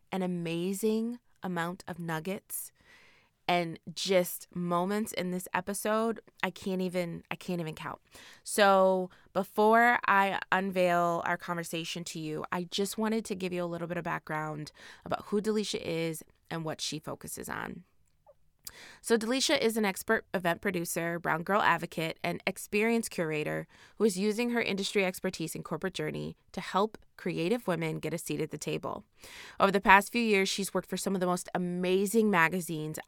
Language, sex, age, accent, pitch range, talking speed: English, female, 20-39, American, 165-205 Hz, 165 wpm